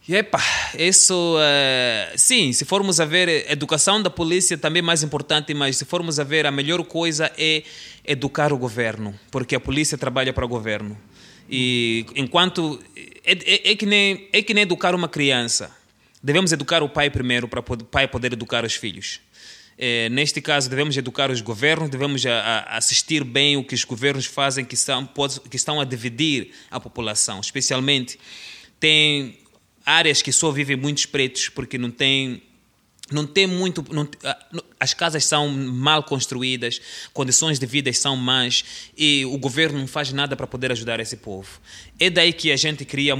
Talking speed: 180 wpm